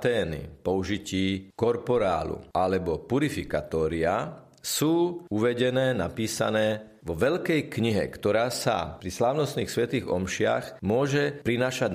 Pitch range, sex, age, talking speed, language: 100-130 Hz, male, 40-59, 90 wpm, Slovak